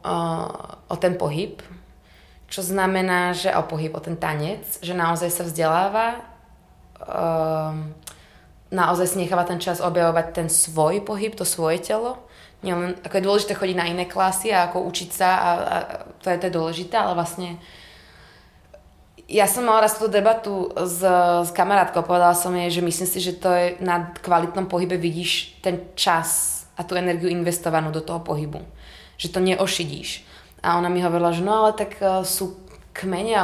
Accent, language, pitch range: native, Czech, 165-190 Hz